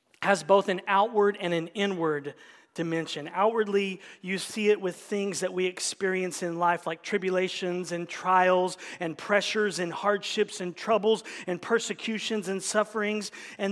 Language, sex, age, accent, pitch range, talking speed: English, male, 40-59, American, 175-210 Hz, 150 wpm